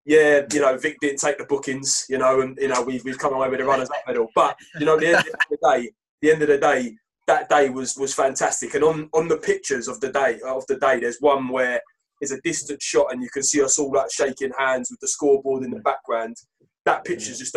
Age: 20-39